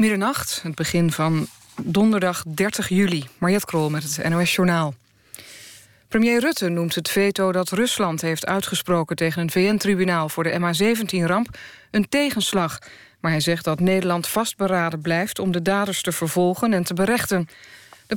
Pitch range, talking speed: 165-210 Hz, 150 wpm